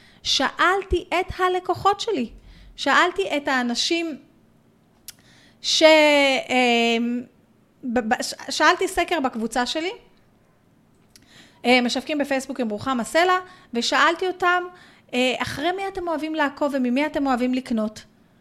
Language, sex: Hebrew, female